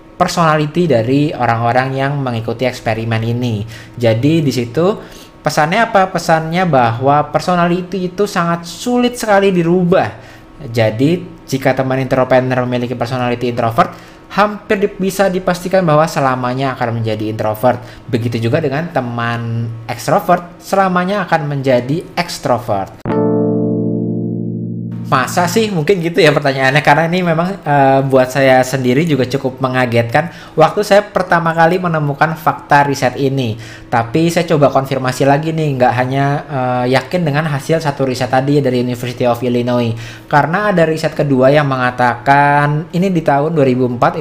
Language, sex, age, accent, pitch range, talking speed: English, male, 20-39, Indonesian, 125-165 Hz, 130 wpm